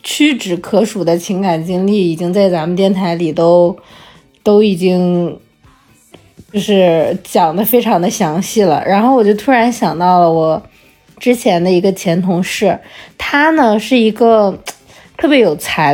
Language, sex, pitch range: Chinese, female, 175-225 Hz